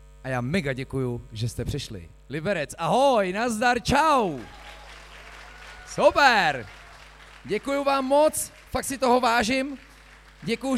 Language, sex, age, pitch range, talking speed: Czech, male, 30-49, 155-205 Hz, 110 wpm